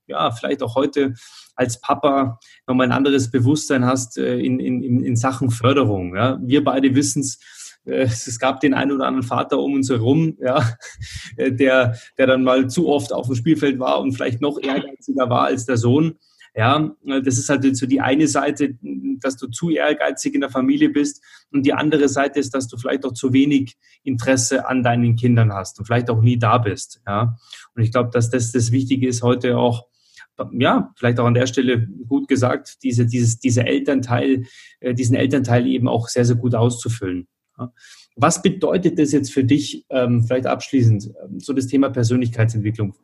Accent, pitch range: German, 125-140 Hz